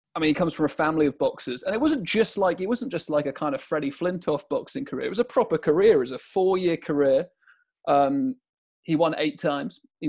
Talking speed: 245 wpm